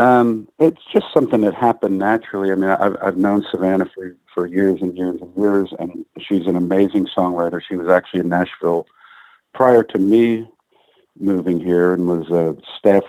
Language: English